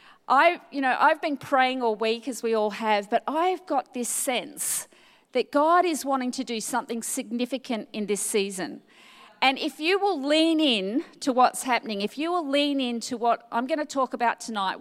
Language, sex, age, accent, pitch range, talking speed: English, female, 40-59, Australian, 220-290 Hz, 205 wpm